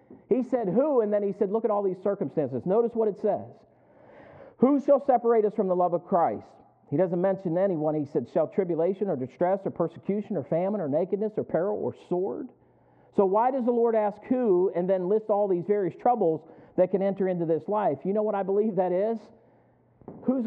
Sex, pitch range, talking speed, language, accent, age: male, 175-225 Hz, 215 wpm, English, American, 50-69